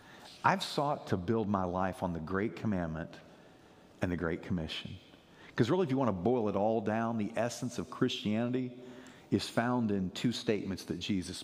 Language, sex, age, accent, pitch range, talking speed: English, male, 50-69, American, 100-125 Hz, 185 wpm